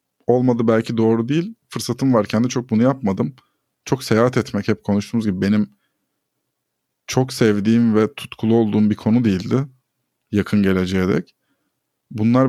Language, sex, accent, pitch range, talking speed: Turkish, male, native, 105-130 Hz, 140 wpm